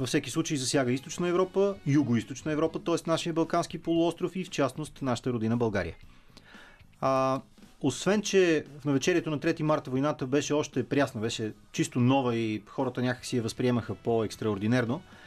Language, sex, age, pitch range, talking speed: Bulgarian, male, 30-49, 115-145 Hz, 155 wpm